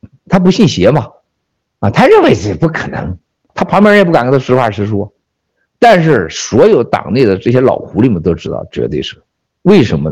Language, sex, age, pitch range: Chinese, male, 50-69, 95-155 Hz